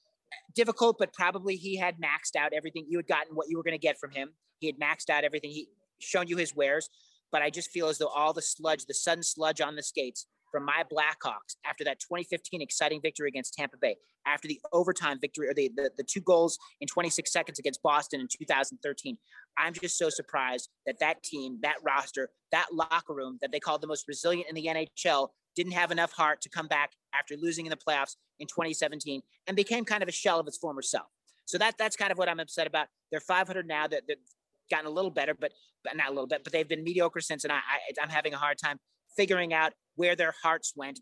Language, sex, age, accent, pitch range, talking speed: English, male, 30-49, American, 150-185 Hz, 235 wpm